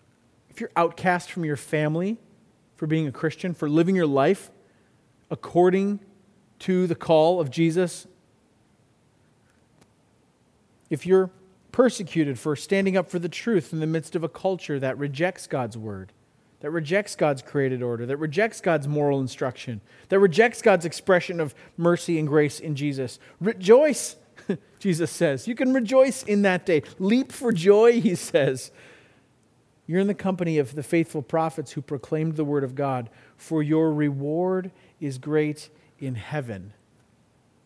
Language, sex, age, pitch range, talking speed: English, male, 40-59, 130-180 Hz, 150 wpm